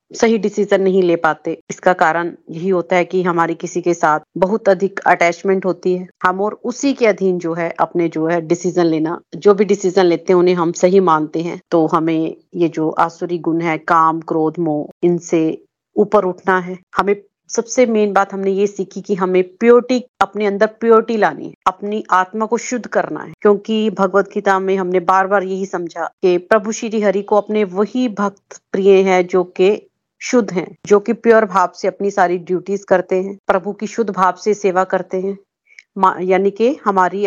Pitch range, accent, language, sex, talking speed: 180-210 Hz, native, Hindi, female, 195 wpm